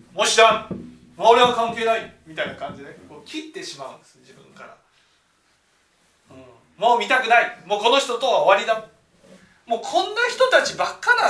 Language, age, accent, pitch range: Japanese, 40-59, native, 180-270 Hz